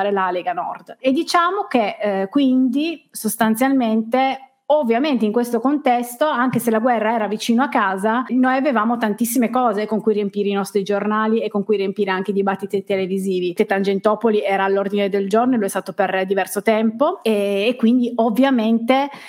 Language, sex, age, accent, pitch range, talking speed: Italian, female, 20-39, native, 200-240 Hz, 170 wpm